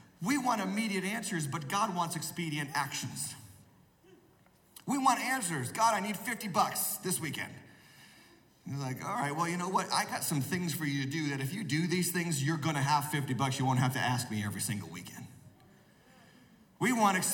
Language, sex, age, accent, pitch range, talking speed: English, male, 40-59, American, 145-245 Hz, 200 wpm